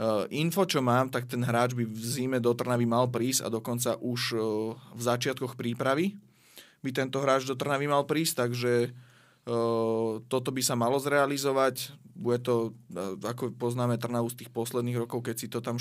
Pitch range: 115-130 Hz